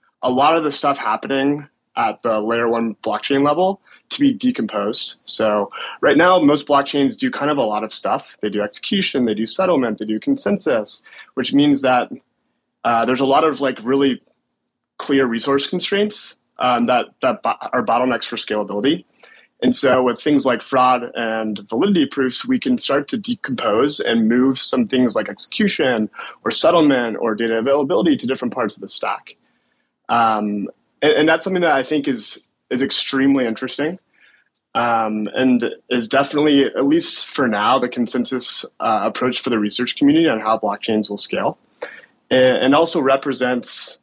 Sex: male